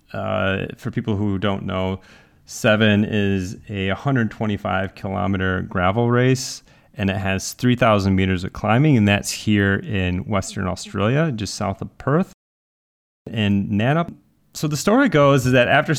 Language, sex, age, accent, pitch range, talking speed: English, male, 30-49, American, 95-115 Hz, 145 wpm